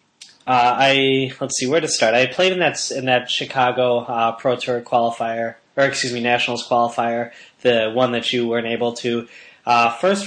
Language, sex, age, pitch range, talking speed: English, male, 10-29, 120-135 Hz, 185 wpm